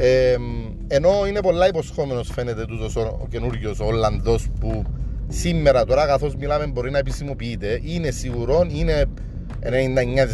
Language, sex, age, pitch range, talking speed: Greek, male, 40-59, 115-140 Hz, 130 wpm